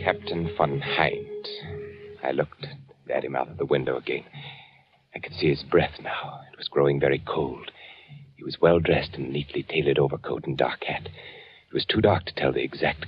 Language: English